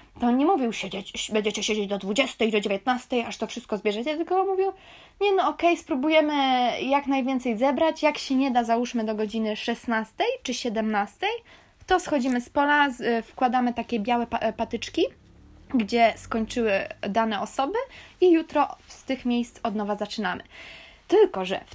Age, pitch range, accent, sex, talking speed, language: 20-39, 215-270 Hz, native, female, 165 wpm, Polish